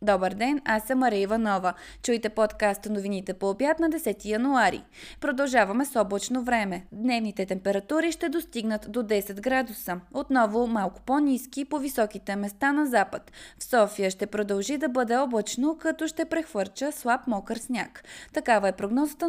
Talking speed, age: 150 wpm, 20-39